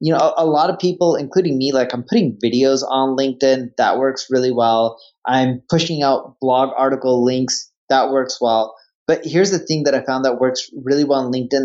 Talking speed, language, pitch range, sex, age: 205 wpm, English, 125-150 Hz, male, 20-39